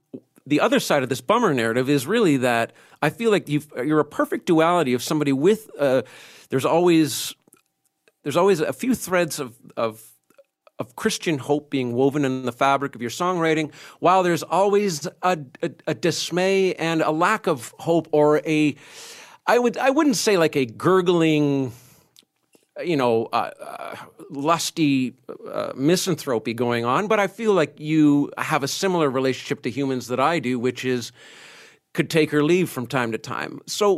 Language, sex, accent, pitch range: English, male, American, 130-175 Hz